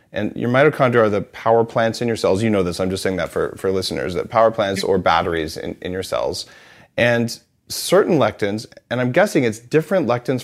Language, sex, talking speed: English, male, 220 wpm